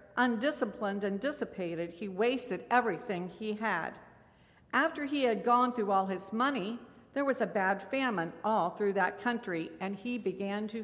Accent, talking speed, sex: American, 160 wpm, female